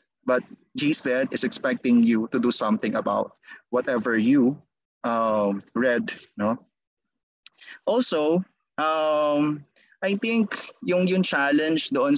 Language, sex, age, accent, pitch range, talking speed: Filipino, male, 20-39, native, 140-230 Hz, 110 wpm